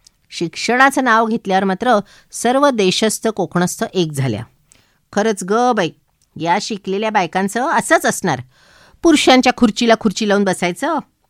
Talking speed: 115 wpm